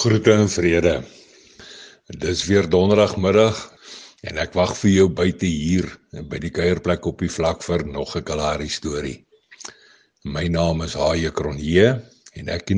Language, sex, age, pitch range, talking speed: English, male, 60-79, 85-100 Hz, 155 wpm